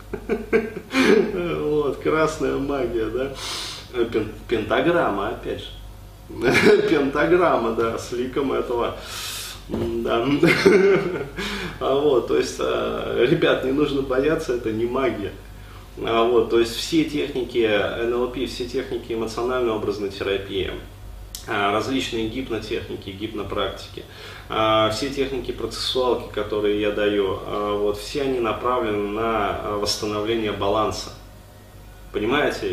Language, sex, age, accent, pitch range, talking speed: Russian, male, 30-49, native, 105-180 Hz, 95 wpm